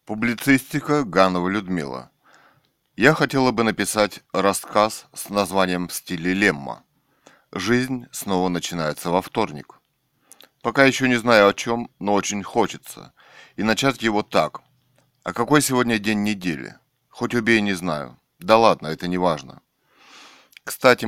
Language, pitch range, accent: Russian, 90-115 Hz, native